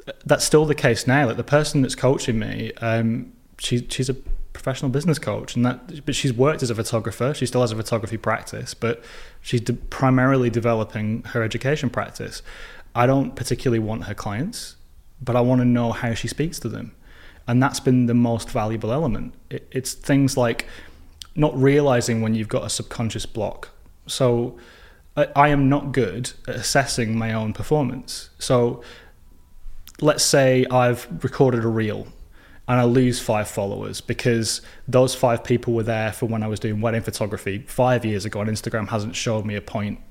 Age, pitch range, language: 10-29, 110-135 Hz, English